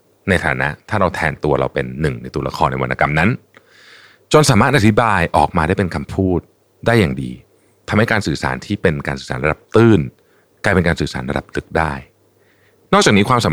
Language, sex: Thai, male